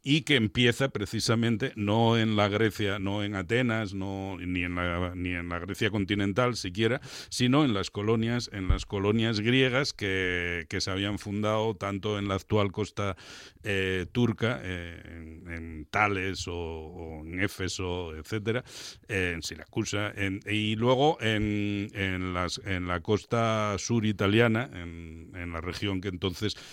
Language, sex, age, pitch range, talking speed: Spanish, male, 60-79, 90-110 Hz, 155 wpm